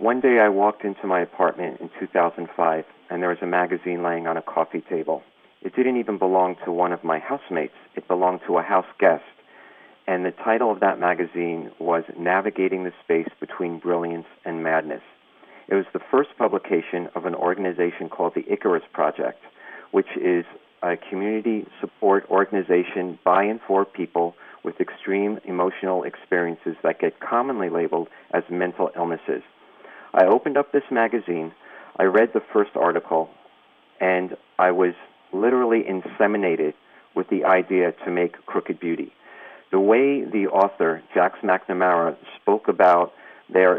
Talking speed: 155 wpm